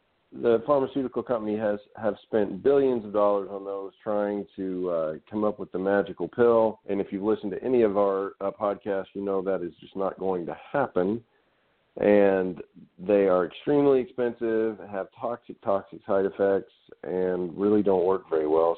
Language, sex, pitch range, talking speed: English, male, 90-115 Hz, 175 wpm